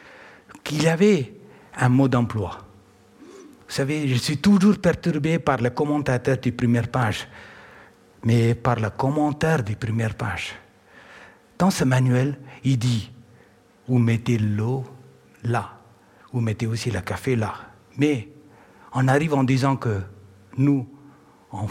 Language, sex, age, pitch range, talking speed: French, male, 60-79, 115-165 Hz, 135 wpm